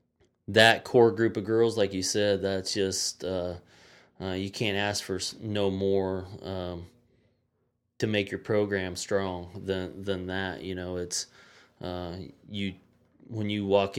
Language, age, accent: English, 20-39, American